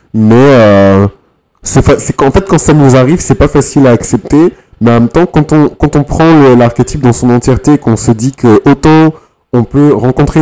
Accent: French